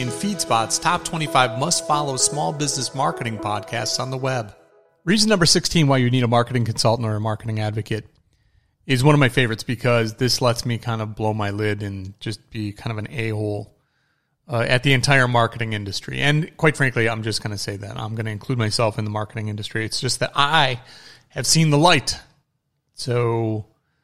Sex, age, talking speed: male, 30-49, 195 wpm